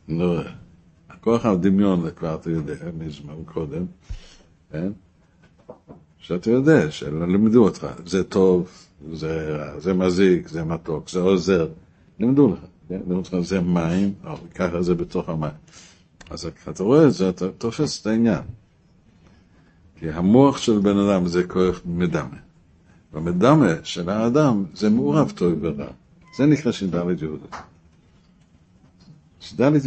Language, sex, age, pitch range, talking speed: Hebrew, male, 60-79, 85-105 Hz, 130 wpm